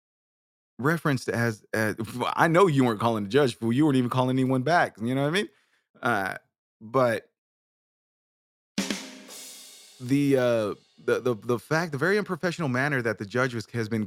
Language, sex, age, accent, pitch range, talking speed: English, male, 30-49, American, 115-155 Hz, 165 wpm